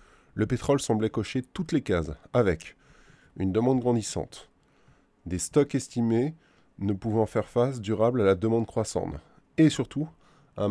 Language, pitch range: French, 95-125 Hz